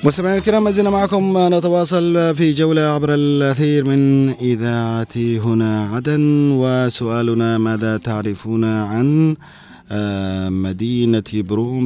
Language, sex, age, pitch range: Arabic, male, 30-49, 105-140 Hz